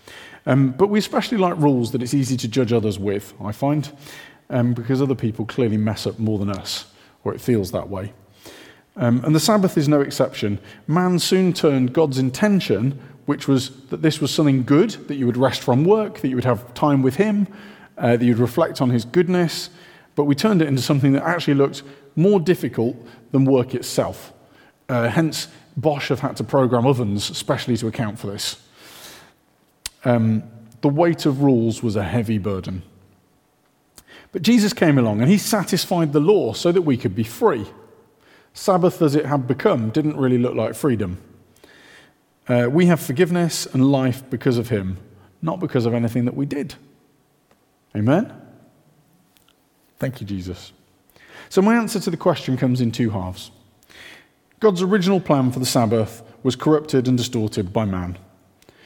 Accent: British